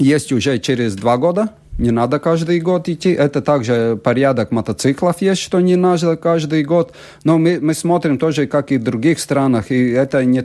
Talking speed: 190 wpm